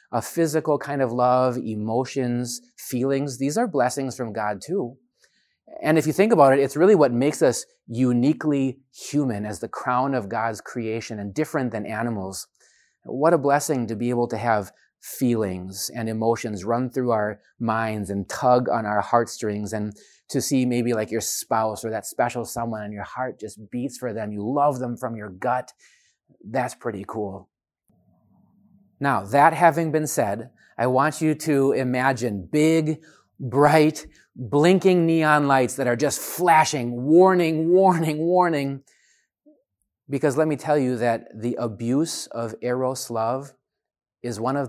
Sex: male